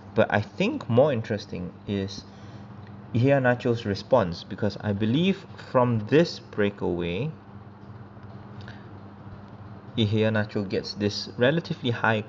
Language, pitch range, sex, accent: English, 100-110 Hz, male, Malaysian